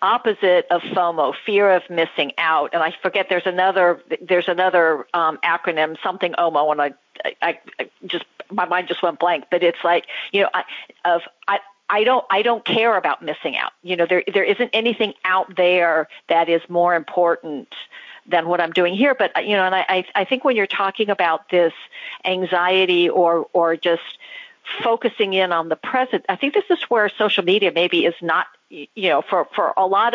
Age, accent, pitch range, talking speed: 50-69, American, 170-200 Hz, 195 wpm